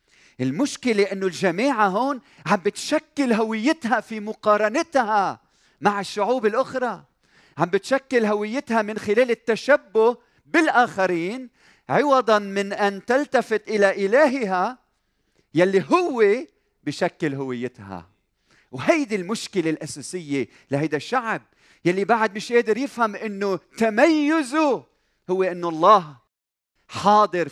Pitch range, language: 150-230 Hz, Arabic